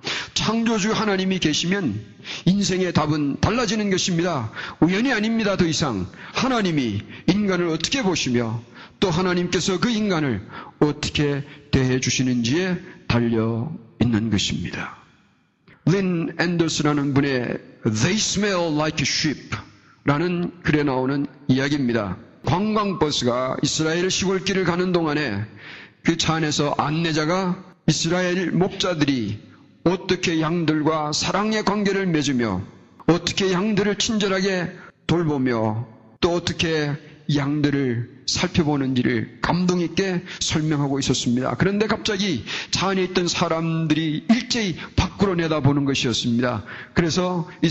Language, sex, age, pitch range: Korean, male, 40-59, 140-185 Hz